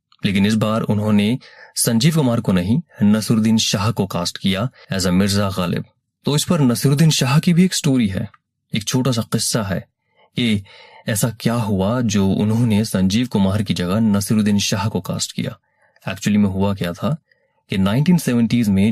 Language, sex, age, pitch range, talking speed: Urdu, male, 30-49, 95-125 Hz, 80 wpm